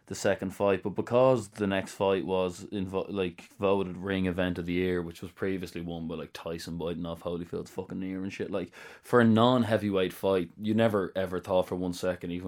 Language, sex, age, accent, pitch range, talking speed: English, male, 20-39, Irish, 90-105 Hz, 220 wpm